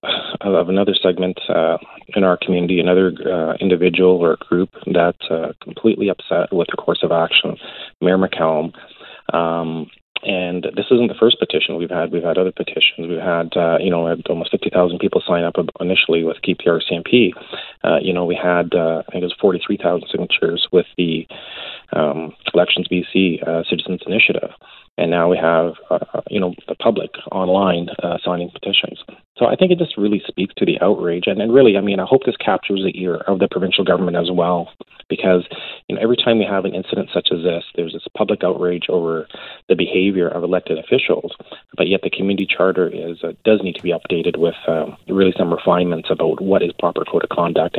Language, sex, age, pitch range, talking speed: English, male, 30-49, 85-95 Hz, 200 wpm